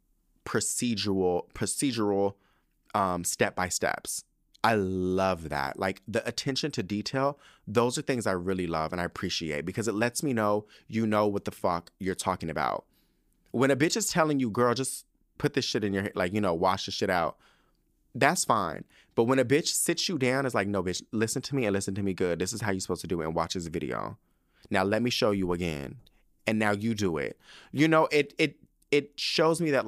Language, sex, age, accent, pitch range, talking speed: English, male, 30-49, American, 100-135 Hz, 220 wpm